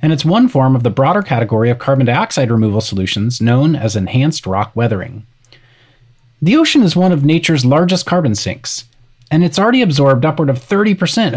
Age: 30-49